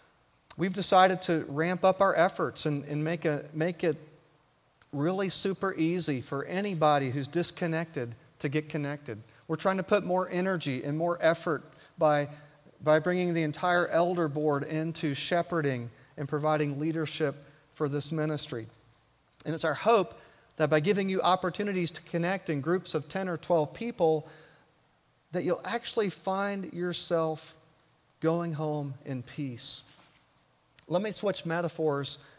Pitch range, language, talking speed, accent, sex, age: 145-175 Hz, English, 145 wpm, American, male, 40-59